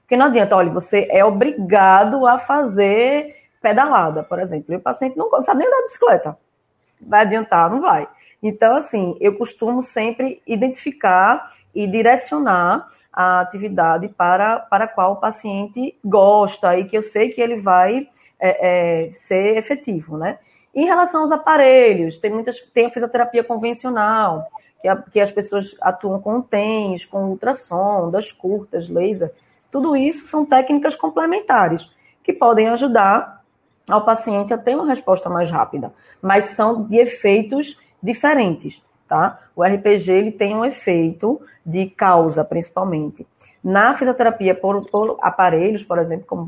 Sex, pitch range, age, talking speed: female, 185-245 Hz, 20-39, 145 wpm